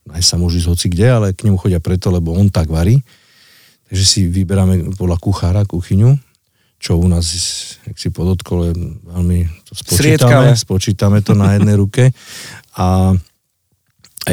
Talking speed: 160 wpm